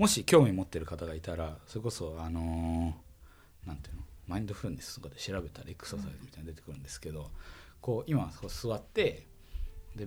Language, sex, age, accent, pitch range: Japanese, male, 20-39, native, 85-130 Hz